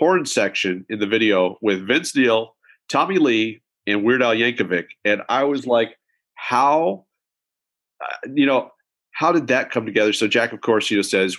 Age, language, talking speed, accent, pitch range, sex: 40-59, English, 180 wpm, American, 110-160 Hz, male